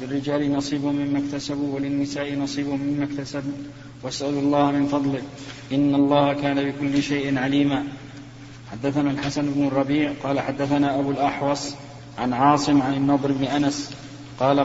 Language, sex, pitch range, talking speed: Arabic, male, 140-145 Hz, 135 wpm